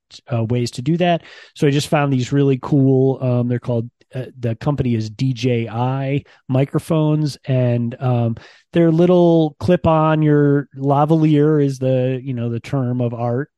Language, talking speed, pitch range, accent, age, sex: English, 165 wpm, 125-145 Hz, American, 30-49, male